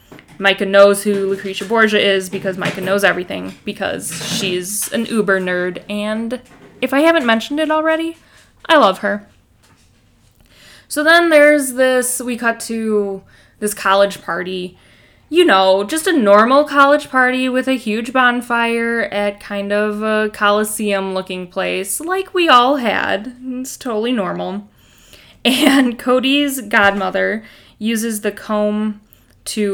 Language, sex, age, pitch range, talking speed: English, female, 10-29, 195-245 Hz, 130 wpm